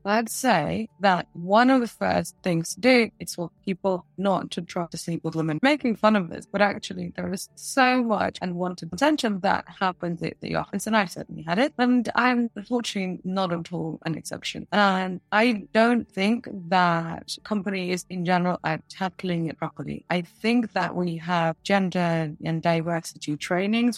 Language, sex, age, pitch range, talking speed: English, female, 20-39, 175-225 Hz, 180 wpm